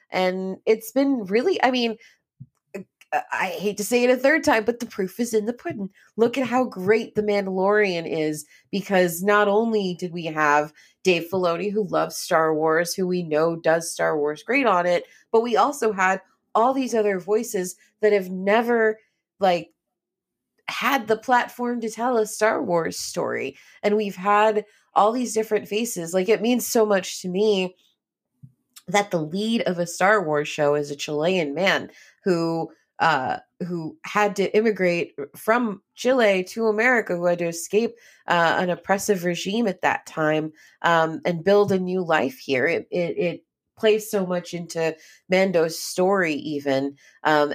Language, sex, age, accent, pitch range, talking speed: English, female, 30-49, American, 165-215 Hz, 170 wpm